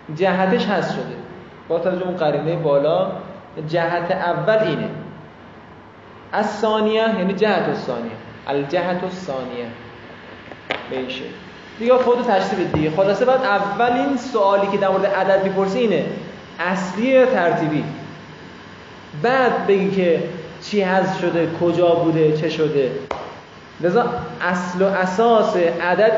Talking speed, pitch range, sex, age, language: 115 wpm, 160-210 Hz, male, 20-39, Persian